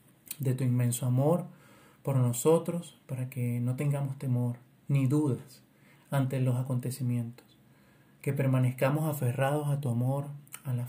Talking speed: 130 wpm